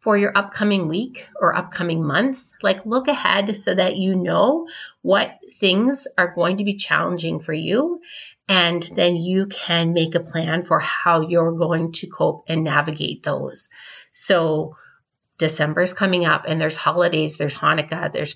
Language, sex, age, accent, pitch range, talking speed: English, female, 30-49, American, 160-200 Hz, 165 wpm